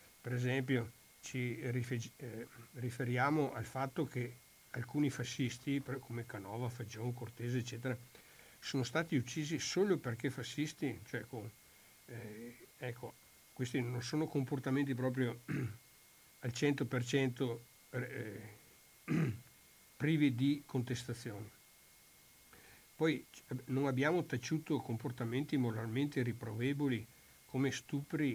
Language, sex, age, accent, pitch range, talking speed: Italian, male, 60-79, native, 120-140 Hz, 95 wpm